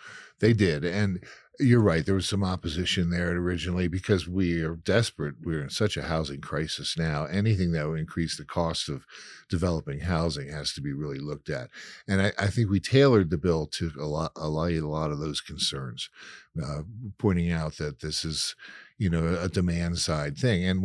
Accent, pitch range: American, 75-100 Hz